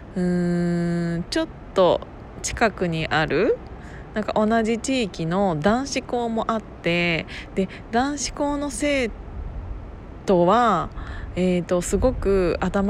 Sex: female